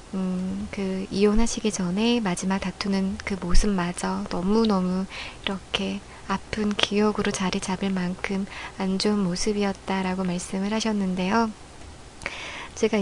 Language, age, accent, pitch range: Korean, 20-39, native, 190-260 Hz